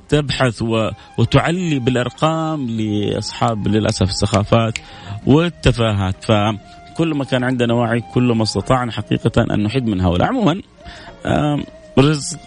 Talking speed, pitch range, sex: 100 wpm, 100-140 Hz, male